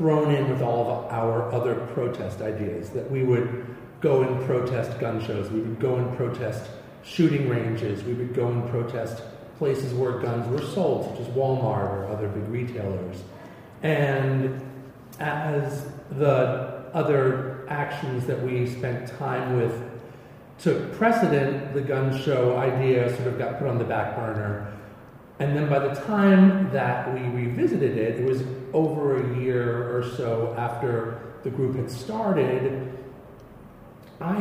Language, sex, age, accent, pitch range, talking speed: English, male, 40-59, American, 115-135 Hz, 150 wpm